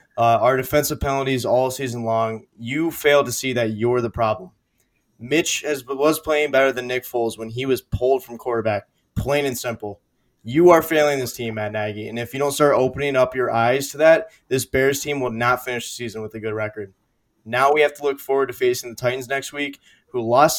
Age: 20-39